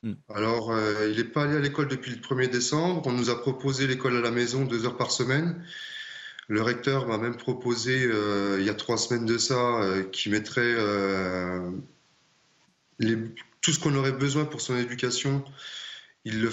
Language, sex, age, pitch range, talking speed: French, male, 20-39, 110-135 Hz, 190 wpm